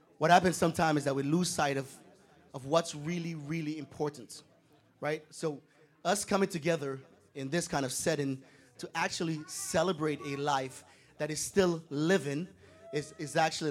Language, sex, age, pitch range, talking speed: English, male, 30-49, 140-175 Hz, 160 wpm